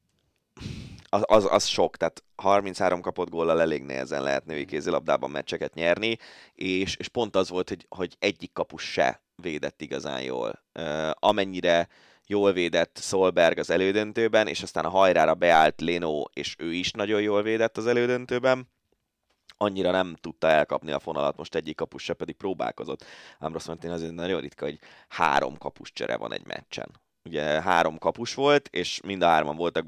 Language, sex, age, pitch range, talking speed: Hungarian, male, 20-39, 85-100 Hz, 165 wpm